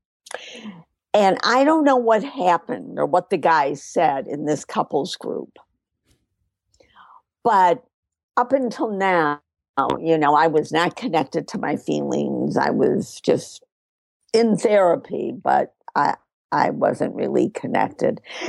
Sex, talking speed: female, 125 wpm